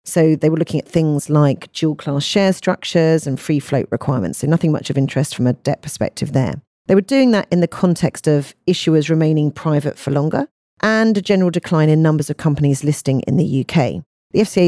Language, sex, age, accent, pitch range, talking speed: English, female, 40-59, British, 140-170 Hz, 215 wpm